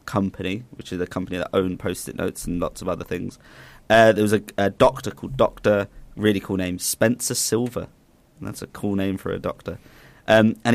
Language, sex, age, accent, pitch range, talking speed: English, male, 20-39, British, 95-110 Hz, 205 wpm